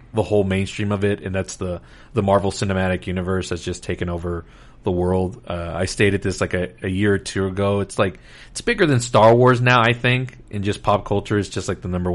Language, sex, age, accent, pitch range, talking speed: English, male, 30-49, American, 95-120 Hz, 235 wpm